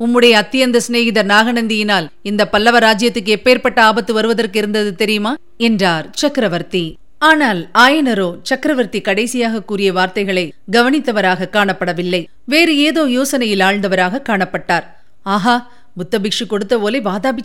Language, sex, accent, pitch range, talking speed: Tamil, female, native, 195-250 Hz, 105 wpm